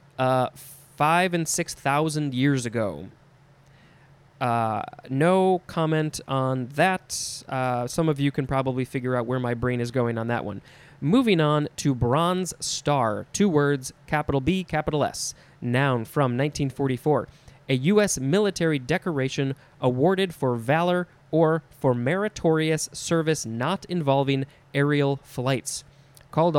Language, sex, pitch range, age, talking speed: English, male, 130-160 Hz, 20-39, 130 wpm